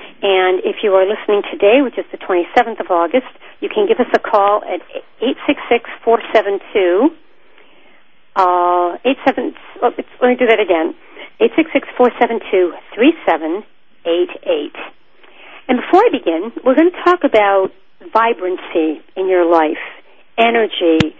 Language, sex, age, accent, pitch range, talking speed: English, female, 50-69, American, 185-255 Hz, 120 wpm